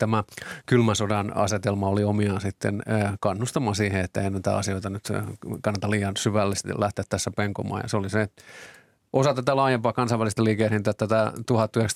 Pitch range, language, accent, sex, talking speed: 100-110 Hz, Finnish, native, male, 150 wpm